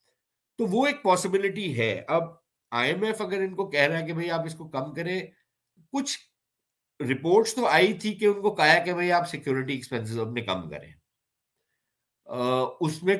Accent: Indian